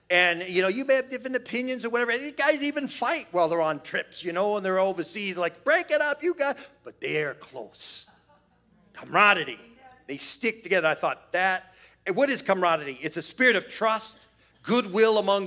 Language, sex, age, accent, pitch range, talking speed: English, male, 40-59, American, 175-230 Hz, 190 wpm